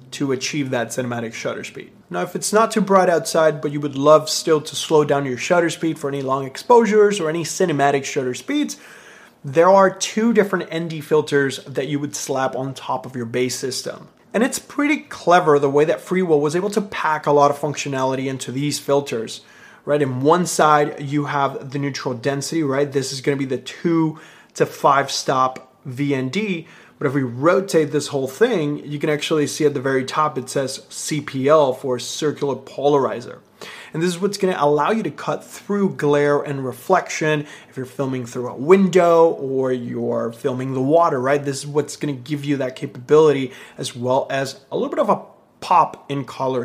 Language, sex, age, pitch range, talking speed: English, male, 30-49, 135-160 Hz, 200 wpm